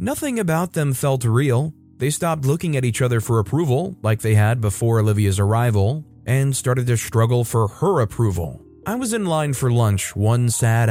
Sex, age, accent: male, 30-49, American